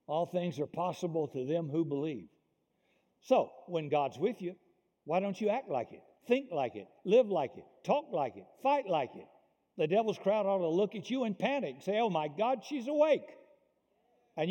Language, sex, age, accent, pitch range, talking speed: English, male, 60-79, American, 135-195 Hz, 205 wpm